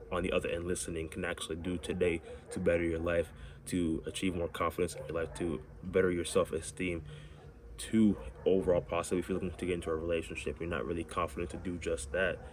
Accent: American